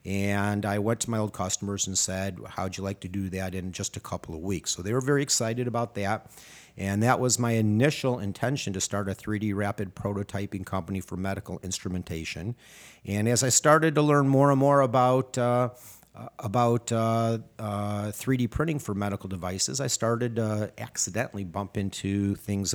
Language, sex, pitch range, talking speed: English, male, 95-115 Hz, 180 wpm